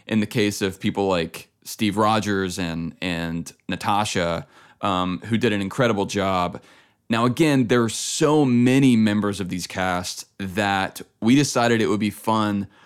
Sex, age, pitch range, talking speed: male, 20-39, 95-120 Hz, 160 wpm